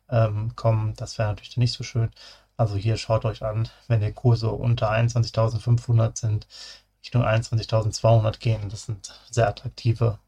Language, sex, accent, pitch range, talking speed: German, male, German, 110-120 Hz, 160 wpm